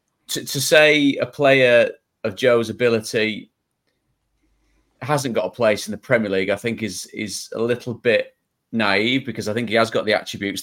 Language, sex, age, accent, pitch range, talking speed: English, male, 30-49, British, 110-125 Hz, 180 wpm